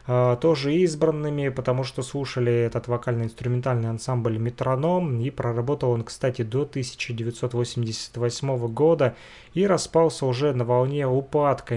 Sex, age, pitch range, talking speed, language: male, 30-49, 120-145 Hz, 110 wpm, Russian